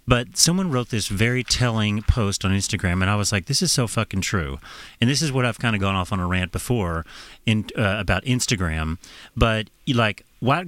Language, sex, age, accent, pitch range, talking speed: English, male, 40-59, American, 100-130 Hz, 215 wpm